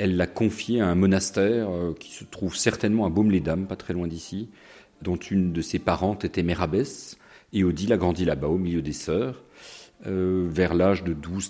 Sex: male